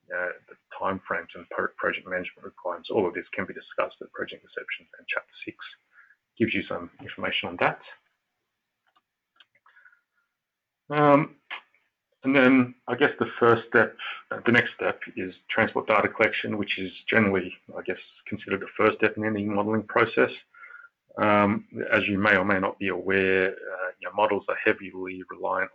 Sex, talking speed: male, 160 wpm